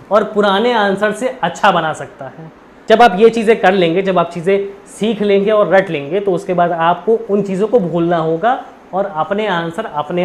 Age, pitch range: 20-39, 160-215 Hz